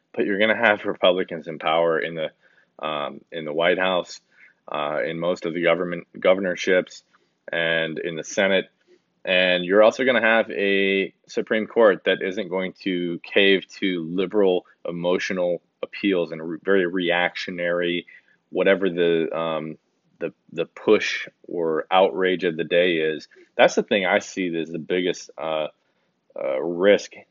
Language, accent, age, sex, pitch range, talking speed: English, American, 20-39, male, 80-95 Hz, 155 wpm